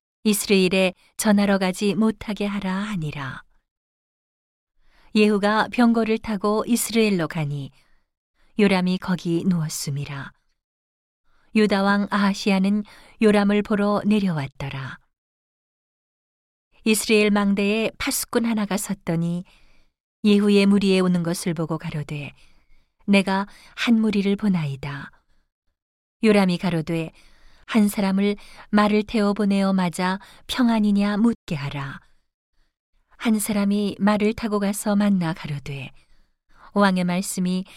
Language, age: Korean, 40-59